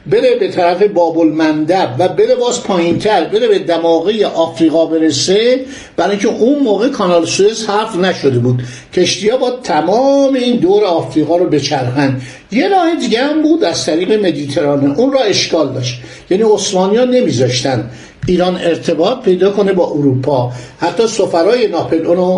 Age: 60-79